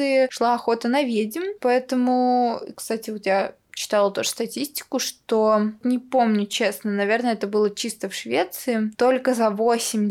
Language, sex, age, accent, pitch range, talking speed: Russian, female, 20-39, native, 215-265 Hz, 145 wpm